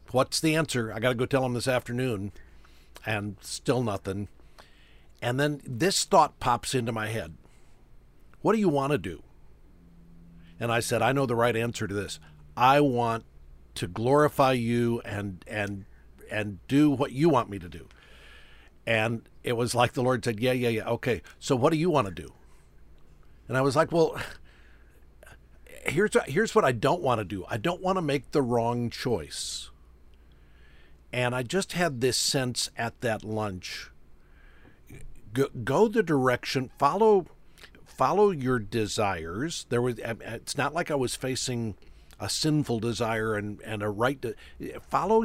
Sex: male